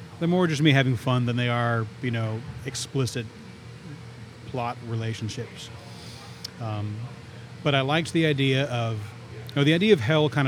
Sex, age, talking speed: male, 30-49, 160 wpm